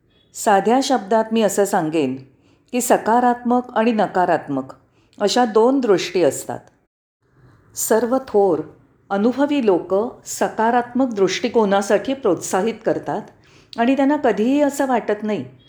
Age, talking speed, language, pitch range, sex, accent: 40-59, 105 wpm, Marathi, 165-230 Hz, female, native